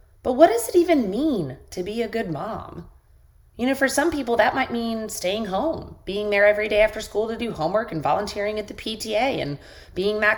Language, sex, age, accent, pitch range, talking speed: English, female, 30-49, American, 180-245 Hz, 220 wpm